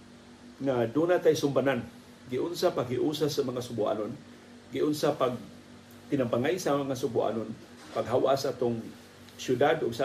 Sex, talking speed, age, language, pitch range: male, 135 wpm, 50-69, Filipino, 120-140 Hz